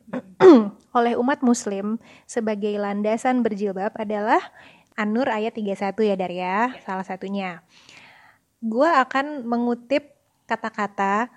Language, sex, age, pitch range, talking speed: Indonesian, female, 20-39, 210-255 Hz, 100 wpm